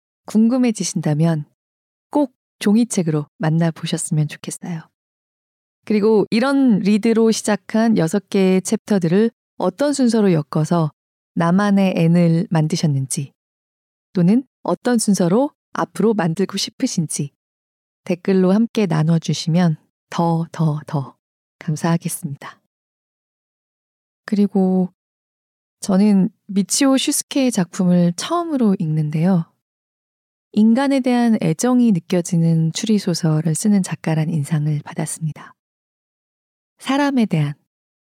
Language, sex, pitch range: Korean, female, 160-225 Hz